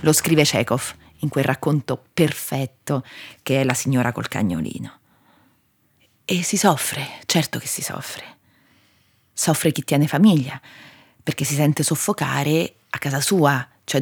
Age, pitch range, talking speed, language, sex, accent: 30-49, 130-155 Hz, 135 wpm, Italian, female, native